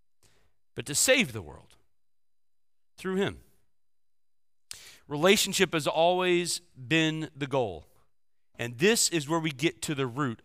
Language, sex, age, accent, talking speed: English, male, 40-59, American, 125 wpm